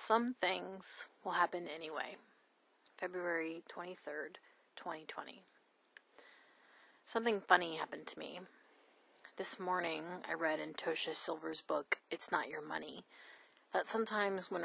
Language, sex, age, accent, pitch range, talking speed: English, female, 30-49, American, 165-210 Hz, 115 wpm